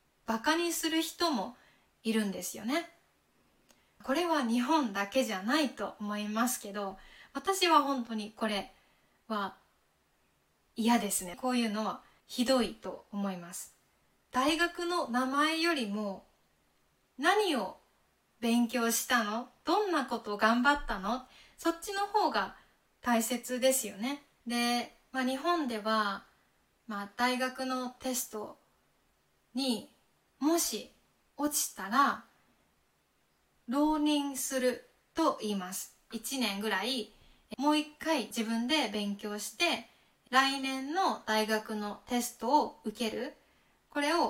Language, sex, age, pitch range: Japanese, female, 20-39, 215-285 Hz